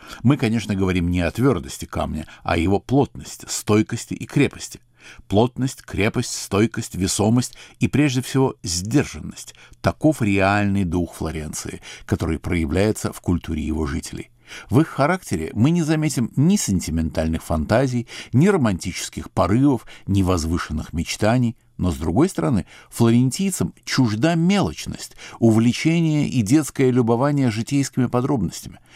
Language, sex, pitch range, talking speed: Russian, male, 90-130 Hz, 125 wpm